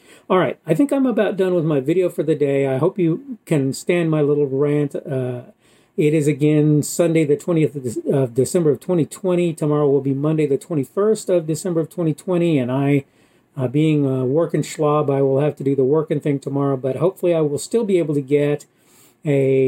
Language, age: English, 40-59